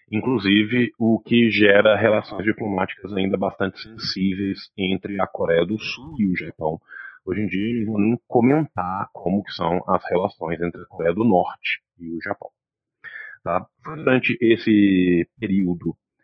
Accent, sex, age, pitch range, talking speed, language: Brazilian, male, 40-59, 95-115 Hz, 145 wpm, Portuguese